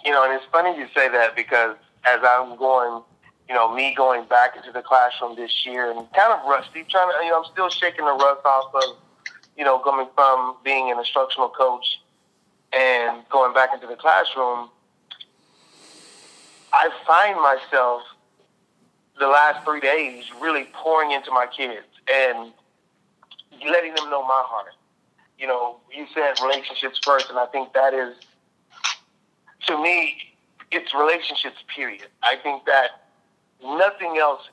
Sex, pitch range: male, 125-145 Hz